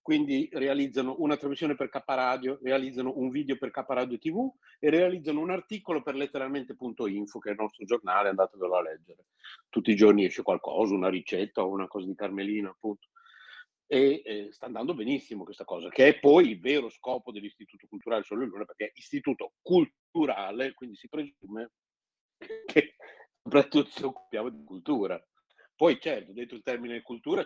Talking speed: 165 wpm